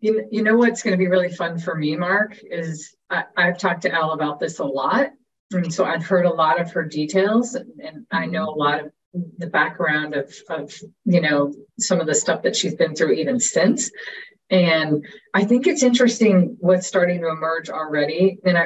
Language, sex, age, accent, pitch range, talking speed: English, female, 40-59, American, 155-200 Hz, 200 wpm